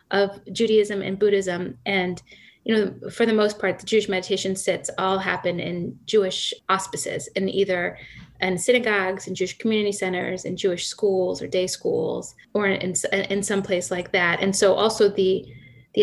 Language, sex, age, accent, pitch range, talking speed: English, female, 20-39, American, 185-210 Hz, 170 wpm